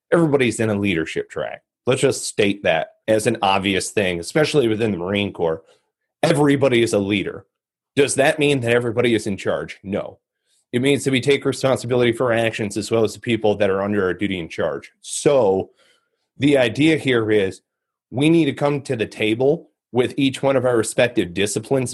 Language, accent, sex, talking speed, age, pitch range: English, American, male, 195 wpm, 30-49, 105-135 Hz